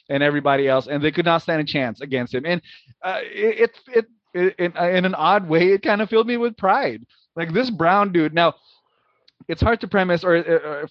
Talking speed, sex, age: 230 wpm, male, 20-39